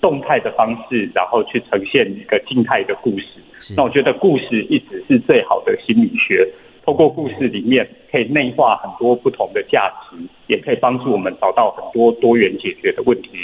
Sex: male